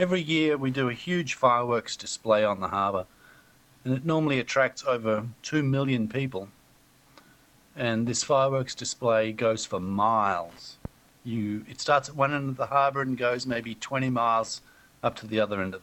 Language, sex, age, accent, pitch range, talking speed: English, male, 50-69, Australian, 110-140 Hz, 175 wpm